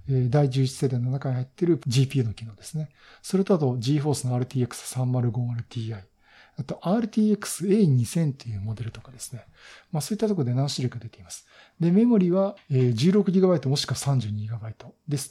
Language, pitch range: Japanese, 125-165 Hz